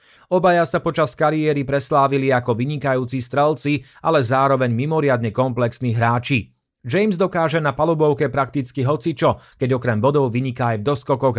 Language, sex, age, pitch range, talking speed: Slovak, male, 30-49, 120-150 Hz, 135 wpm